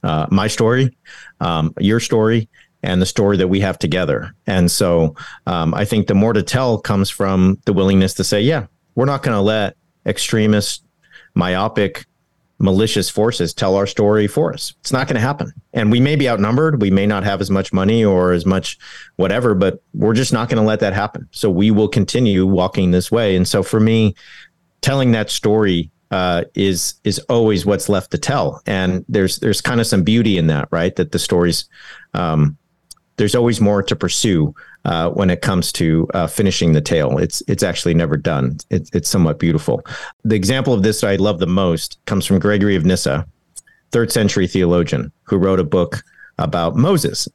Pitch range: 90-110 Hz